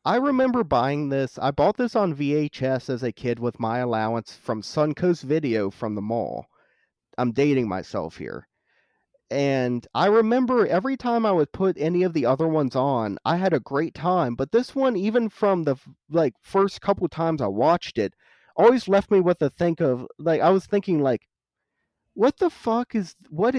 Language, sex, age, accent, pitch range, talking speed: English, male, 30-49, American, 135-220 Hz, 190 wpm